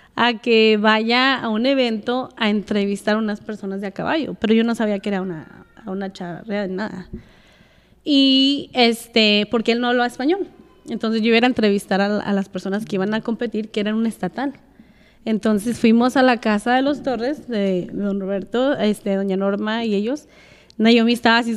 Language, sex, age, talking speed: Spanish, female, 20-39, 190 wpm